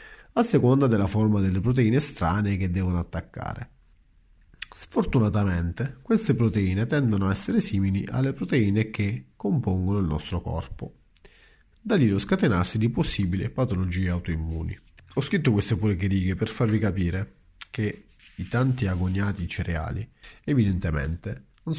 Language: Italian